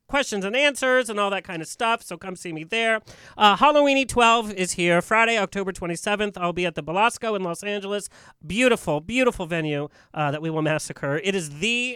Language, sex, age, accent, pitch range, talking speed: English, male, 30-49, American, 165-225 Hz, 205 wpm